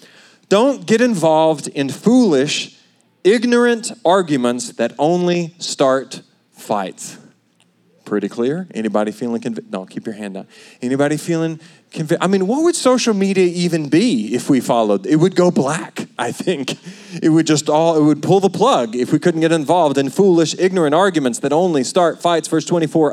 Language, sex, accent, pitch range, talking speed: English, male, American, 130-185 Hz, 170 wpm